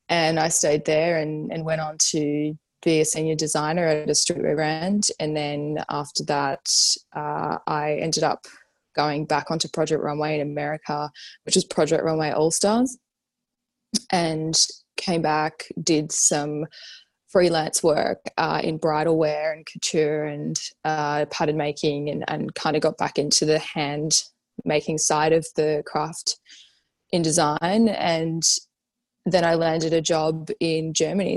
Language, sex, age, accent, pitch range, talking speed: English, female, 20-39, Australian, 155-175 Hz, 150 wpm